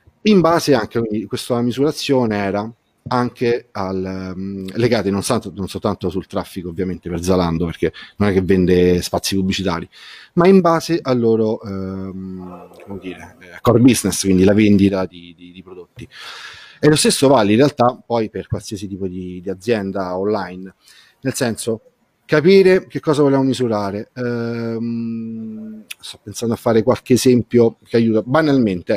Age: 40-59